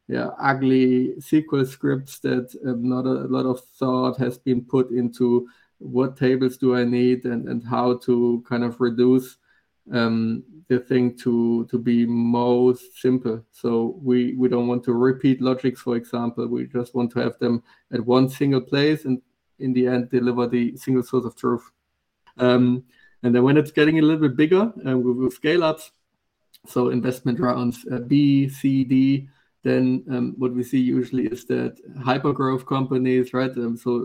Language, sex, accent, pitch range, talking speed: English, male, German, 125-130 Hz, 175 wpm